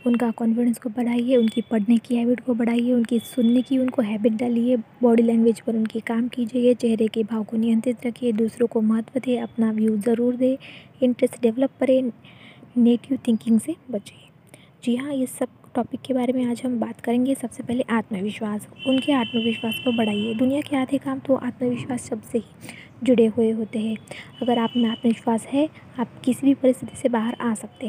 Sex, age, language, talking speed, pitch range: female, 20-39, Hindi, 185 wpm, 225-250 Hz